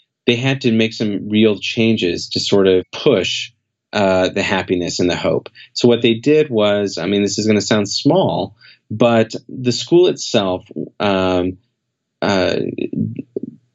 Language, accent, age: English, American, 30-49